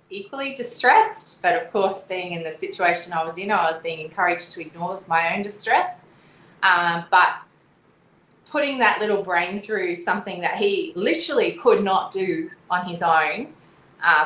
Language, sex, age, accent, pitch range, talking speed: English, female, 20-39, Australian, 160-200 Hz, 165 wpm